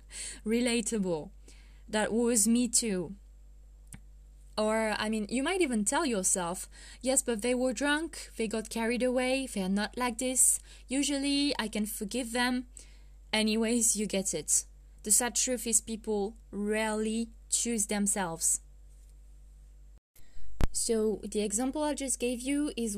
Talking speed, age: 135 wpm, 20-39